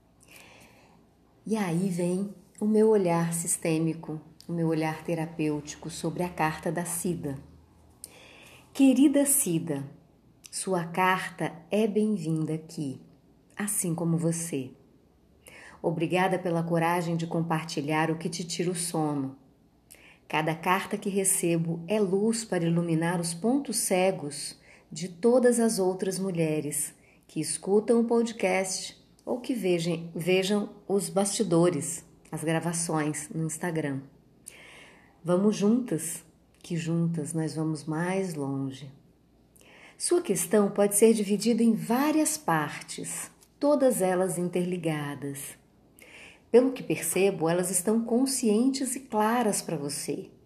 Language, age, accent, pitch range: Portuguese, 40-59, Brazilian, 160-205 Hz